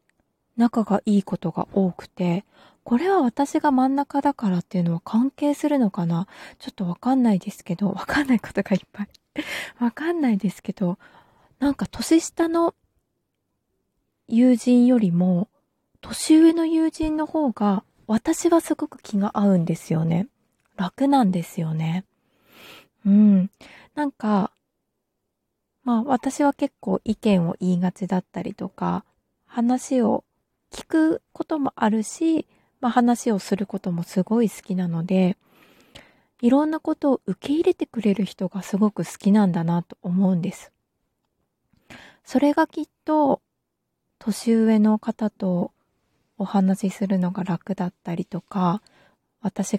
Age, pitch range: 20-39, 185-265 Hz